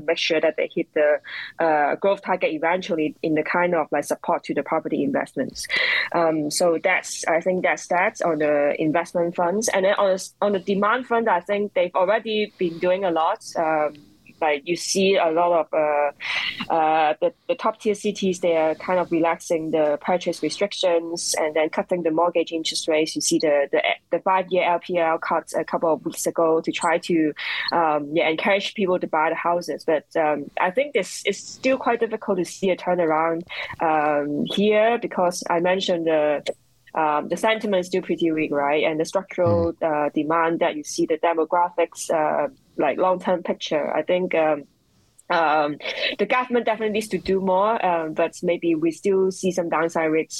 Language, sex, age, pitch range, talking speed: English, female, 20-39, 155-185 Hz, 190 wpm